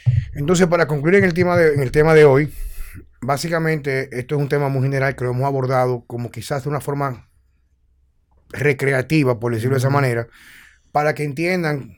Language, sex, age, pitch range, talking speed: Spanish, male, 30-49, 115-135 Hz, 170 wpm